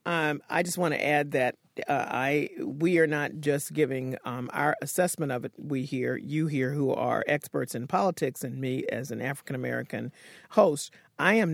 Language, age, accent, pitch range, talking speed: English, 40-59, American, 145-180 Hz, 190 wpm